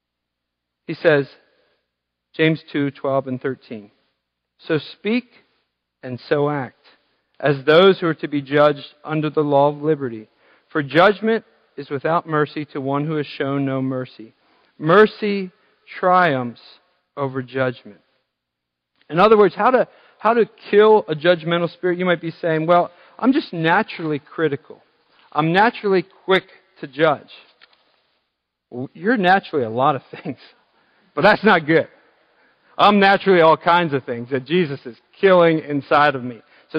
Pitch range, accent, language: 140-195 Hz, American, English